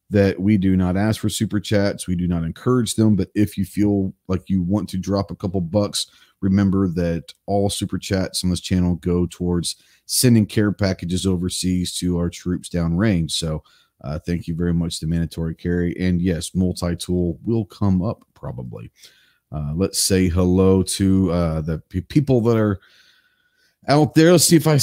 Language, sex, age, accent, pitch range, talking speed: English, male, 40-59, American, 90-115 Hz, 180 wpm